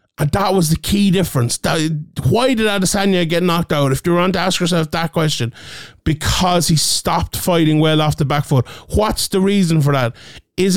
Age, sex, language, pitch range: 30-49, male, English, 150-180 Hz